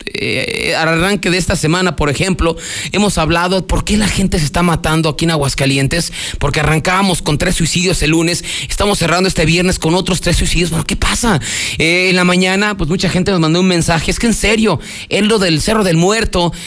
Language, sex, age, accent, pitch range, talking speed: Spanish, male, 30-49, Mexican, 160-195 Hz, 210 wpm